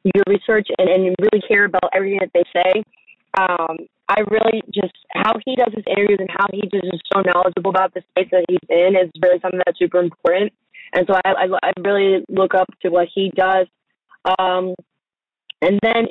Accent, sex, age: American, female, 20-39